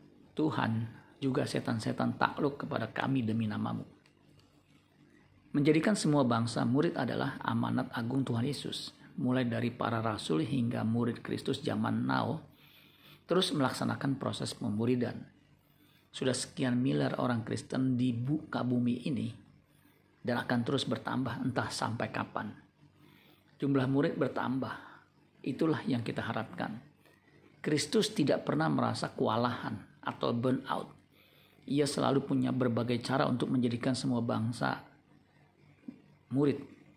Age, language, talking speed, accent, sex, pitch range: 50-69, Indonesian, 115 wpm, native, male, 115-135 Hz